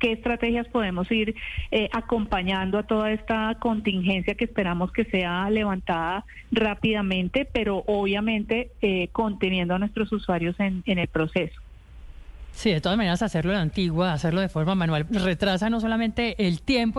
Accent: Colombian